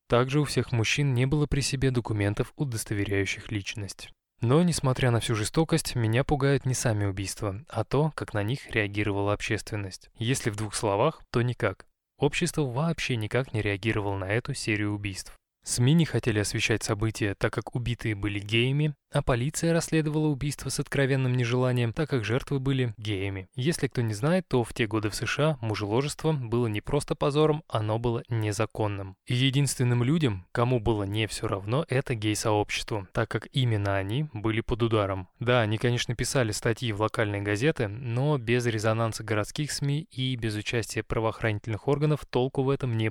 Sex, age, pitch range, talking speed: male, 20-39, 110-140 Hz, 170 wpm